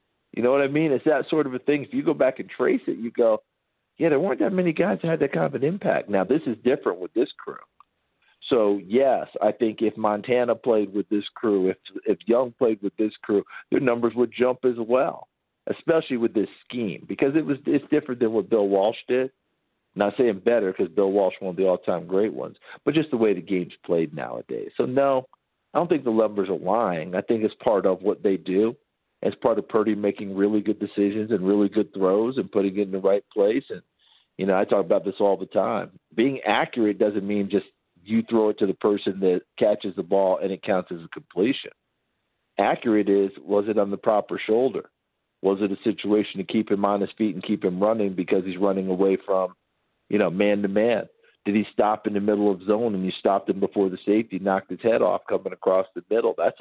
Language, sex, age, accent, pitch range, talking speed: English, male, 50-69, American, 100-120 Hz, 235 wpm